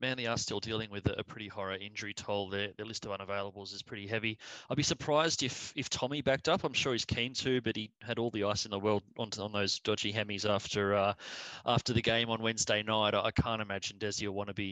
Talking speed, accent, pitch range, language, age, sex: 255 wpm, Australian, 100-120 Hz, English, 20-39, male